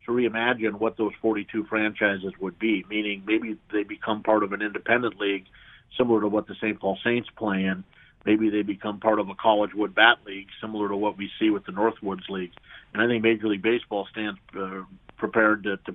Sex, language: male, English